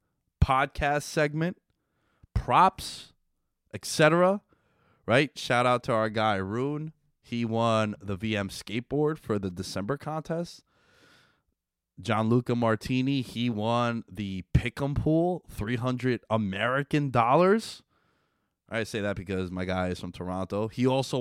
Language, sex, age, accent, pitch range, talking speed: English, male, 20-39, American, 100-130 Hz, 120 wpm